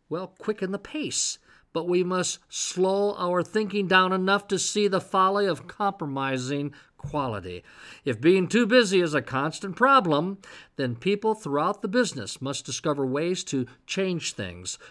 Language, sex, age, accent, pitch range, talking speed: English, male, 50-69, American, 140-195 Hz, 155 wpm